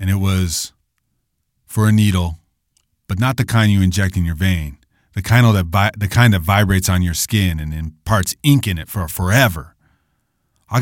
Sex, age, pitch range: male, 30-49, 95-115 Hz